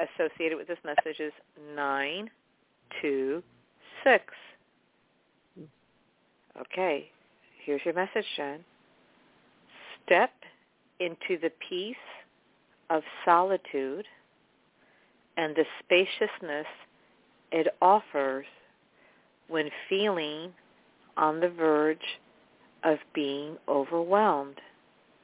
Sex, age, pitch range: female, 50-69, 150-185 Hz